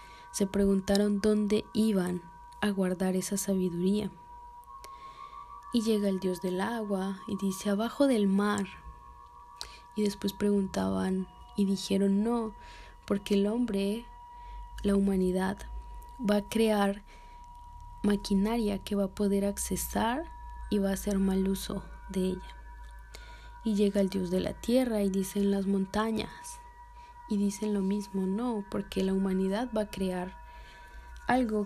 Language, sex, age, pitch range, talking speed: Spanish, female, 20-39, 195-240 Hz, 135 wpm